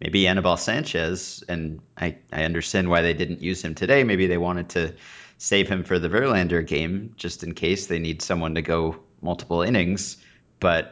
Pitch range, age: 85-95 Hz, 30-49